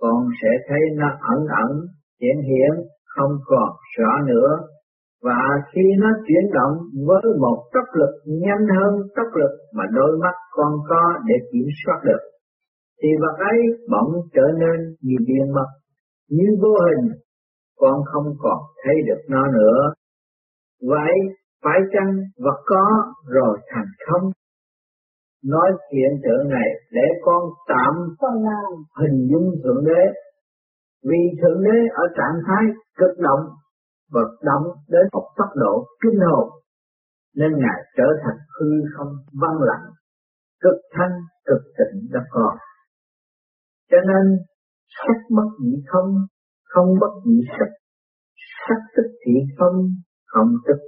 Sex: male